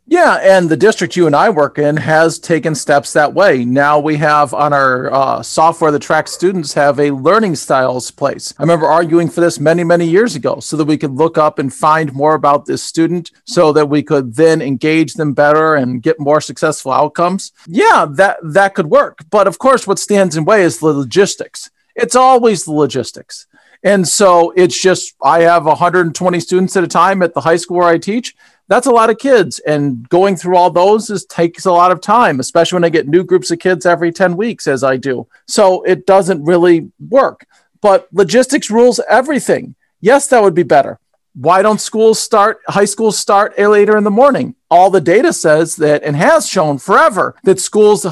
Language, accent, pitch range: English, American, 155-200 Hz